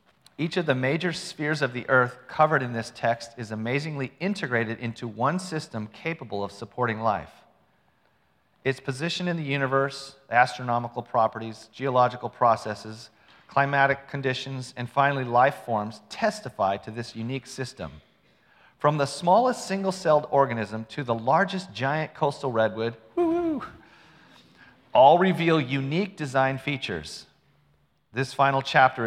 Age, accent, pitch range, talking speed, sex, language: 40-59, American, 115-150 Hz, 125 wpm, male, English